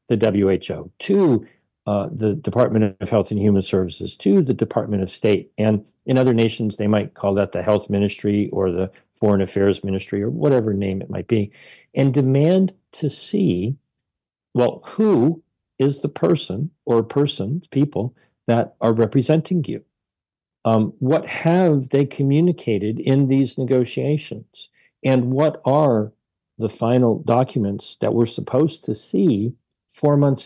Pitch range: 105-145 Hz